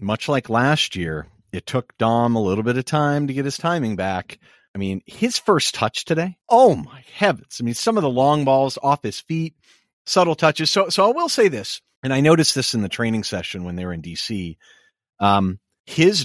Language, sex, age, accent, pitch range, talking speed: English, male, 40-59, American, 110-160 Hz, 220 wpm